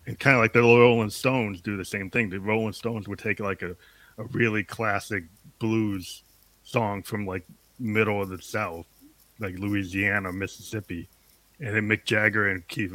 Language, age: English, 40-59